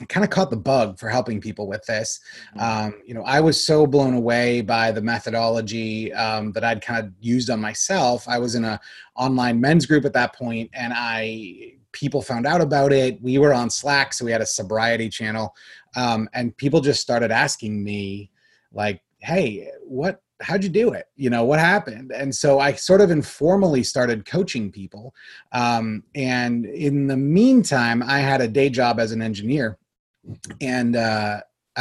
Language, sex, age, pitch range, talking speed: English, male, 30-49, 115-145 Hz, 185 wpm